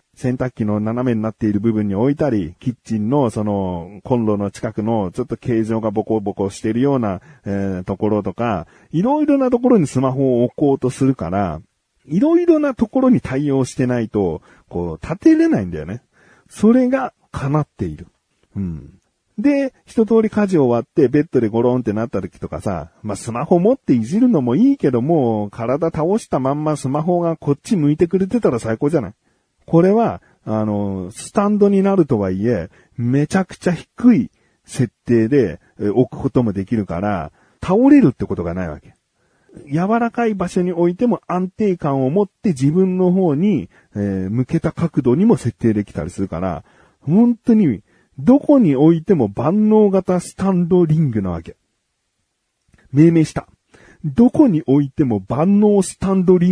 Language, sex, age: Japanese, male, 40-59